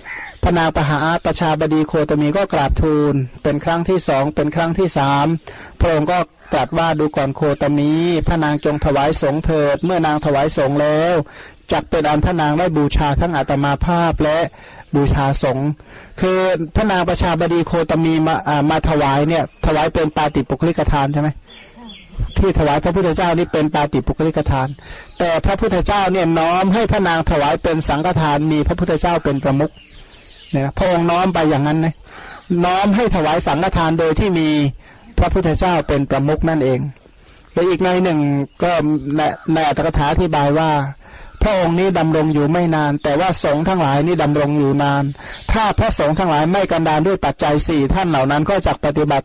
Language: Thai